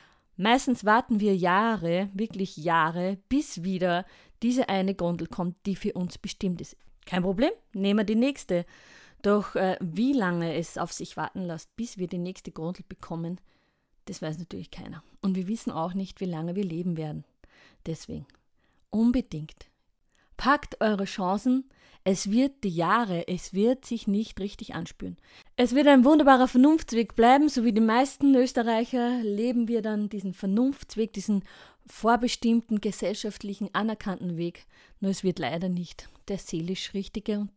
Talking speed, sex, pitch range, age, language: 155 wpm, female, 180-235 Hz, 30-49, German